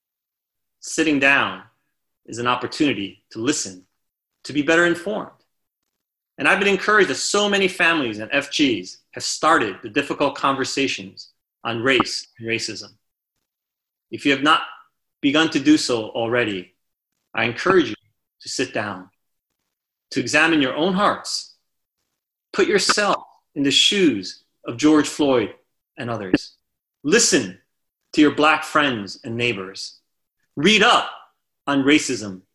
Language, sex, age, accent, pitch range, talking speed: English, male, 30-49, American, 115-180 Hz, 130 wpm